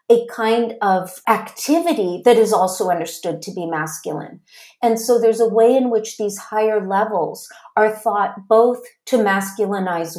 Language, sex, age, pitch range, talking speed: English, female, 40-59, 190-240 Hz, 155 wpm